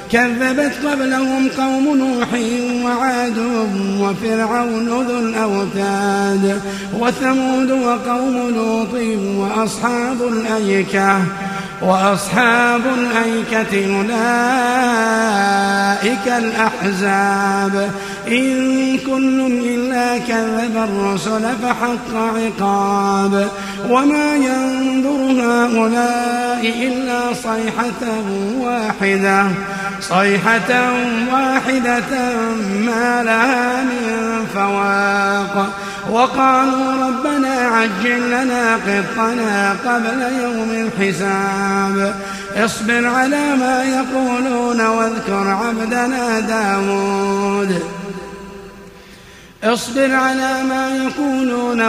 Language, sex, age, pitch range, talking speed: Arabic, male, 50-69, 200-245 Hz, 65 wpm